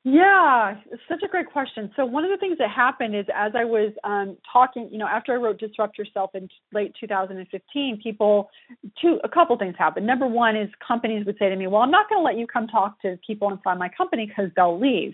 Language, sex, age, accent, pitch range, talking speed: English, female, 30-49, American, 195-245 Hz, 240 wpm